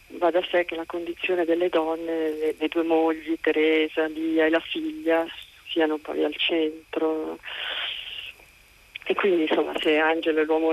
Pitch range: 155-165 Hz